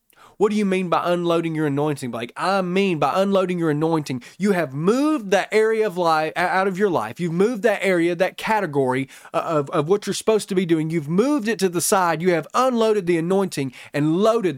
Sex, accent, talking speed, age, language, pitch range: male, American, 220 wpm, 30-49, English, 160-210 Hz